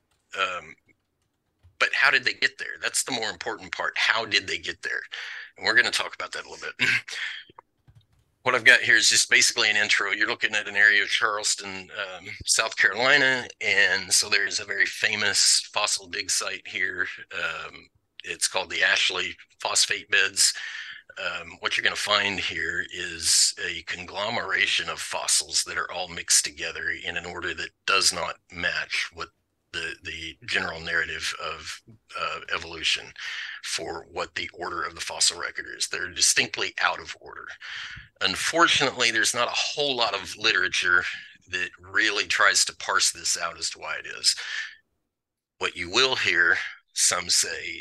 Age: 40-59